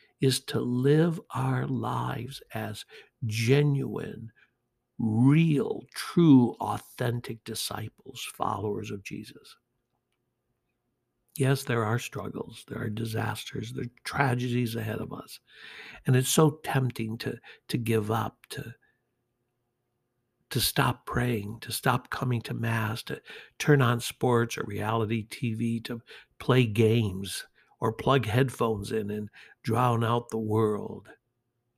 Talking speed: 120 wpm